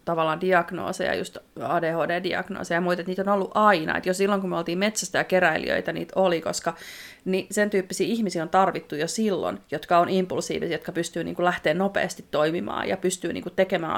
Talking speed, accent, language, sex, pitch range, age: 185 wpm, native, Finnish, female, 170-205 Hz, 30-49